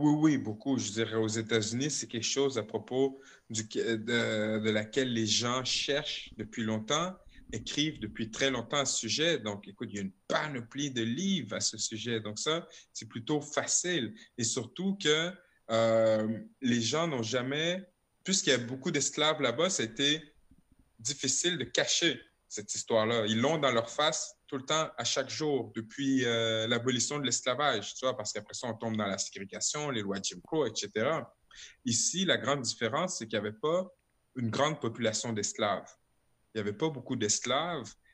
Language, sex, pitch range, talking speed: French, male, 110-145 Hz, 185 wpm